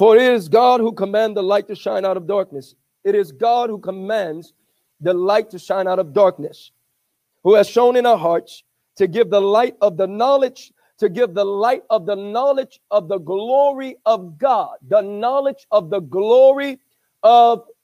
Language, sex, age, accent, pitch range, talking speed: English, male, 50-69, American, 195-275 Hz, 190 wpm